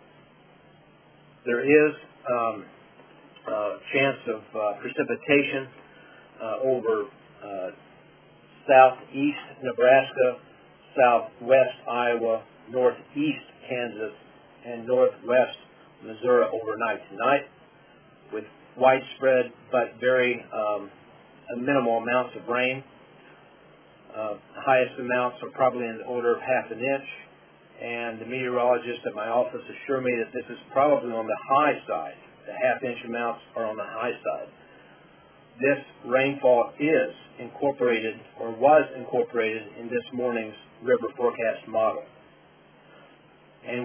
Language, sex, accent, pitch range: English, male, American, 115-130 Hz